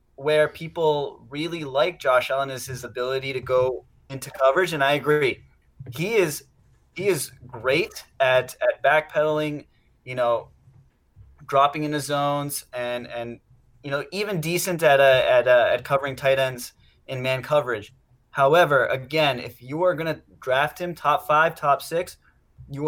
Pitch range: 125-150 Hz